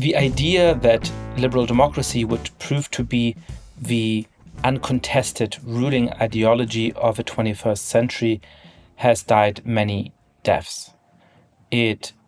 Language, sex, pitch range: English, male, 105-120 Hz